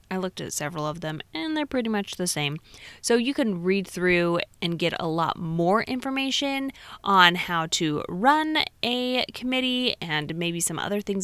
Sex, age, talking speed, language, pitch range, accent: female, 20-39, 180 wpm, English, 180-255 Hz, American